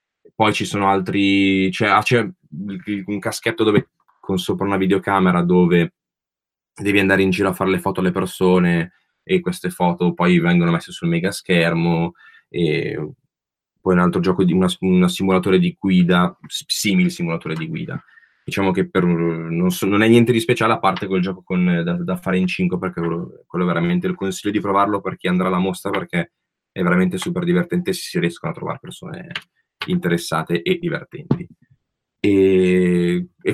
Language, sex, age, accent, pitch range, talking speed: Italian, male, 20-39, native, 90-110 Hz, 170 wpm